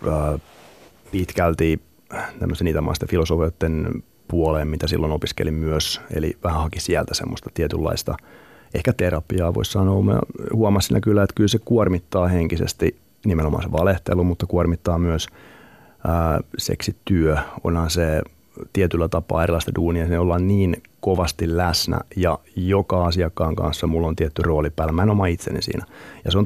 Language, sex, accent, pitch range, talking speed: Finnish, male, native, 80-90 Hz, 140 wpm